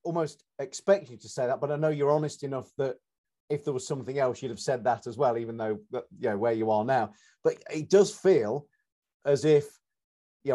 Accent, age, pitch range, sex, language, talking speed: British, 40-59, 120-150 Hz, male, English, 220 wpm